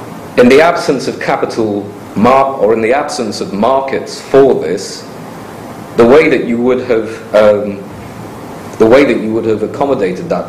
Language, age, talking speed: English, 40-59, 165 wpm